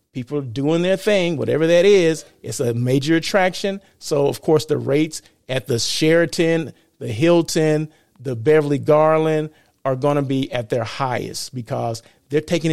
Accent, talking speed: American, 160 wpm